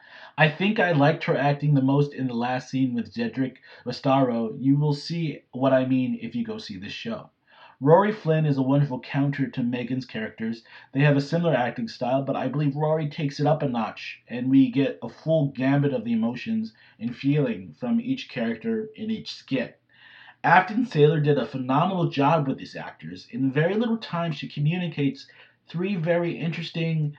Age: 30-49